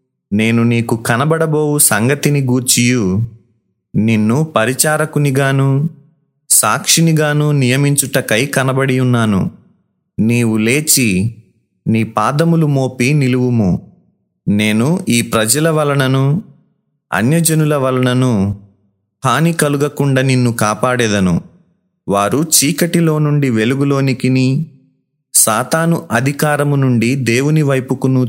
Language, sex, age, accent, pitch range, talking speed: Telugu, male, 30-49, native, 115-150 Hz, 75 wpm